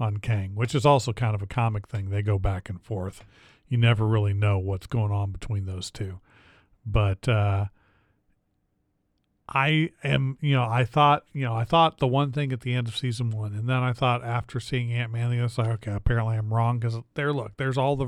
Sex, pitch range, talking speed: male, 105-130 Hz, 220 wpm